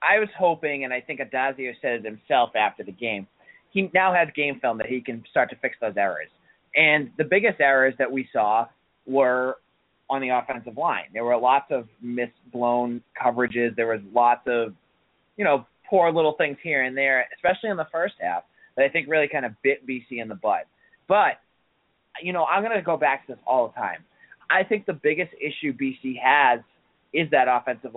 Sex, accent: male, American